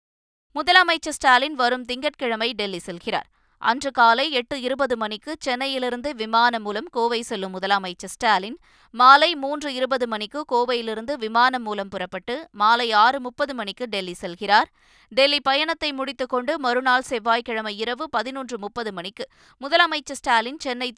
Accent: native